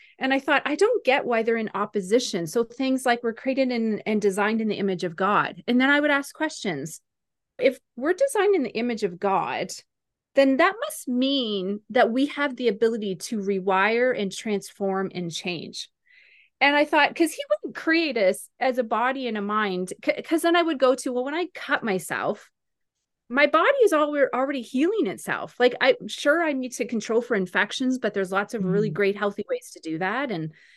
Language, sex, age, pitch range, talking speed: English, female, 30-49, 205-290 Hz, 205 wpm